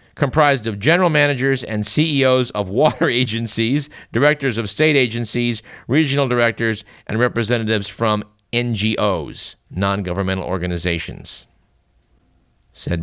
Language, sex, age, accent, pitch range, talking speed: English, male, 50-69, American, 100-130 Hz, 100 wpm